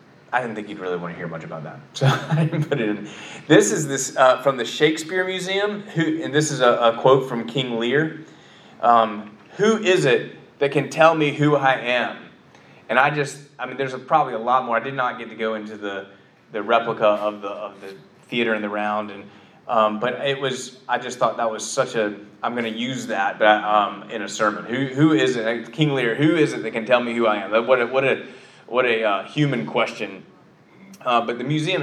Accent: American